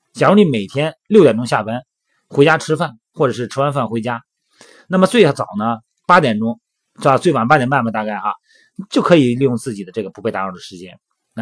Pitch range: 110-145 Hz